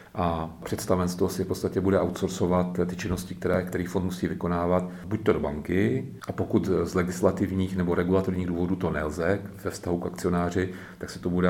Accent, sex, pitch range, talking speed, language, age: native, male, 90-95 Hz, 185 wpm, Czech, 40-59